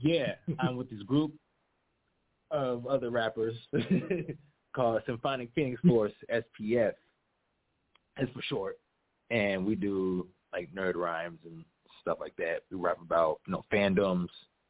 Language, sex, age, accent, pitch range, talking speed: English, male, 20-39, American, 100-145 Hz, 130 wpm